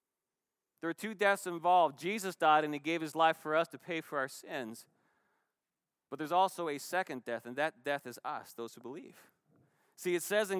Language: English